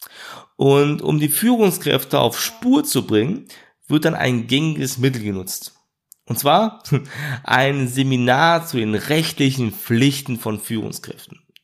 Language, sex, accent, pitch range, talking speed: German, male, German, 120-160 Hz, 125 wpm